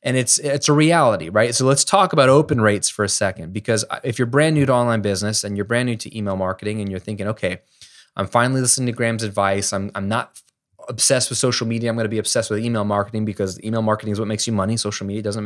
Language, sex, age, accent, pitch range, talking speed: English, male, 20-39, American, 110-145 Hz, 250 wpm